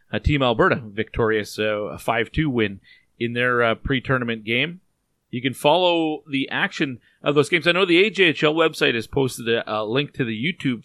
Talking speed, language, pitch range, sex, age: 190 wpm, English, 110-135 Hz, male, 30-49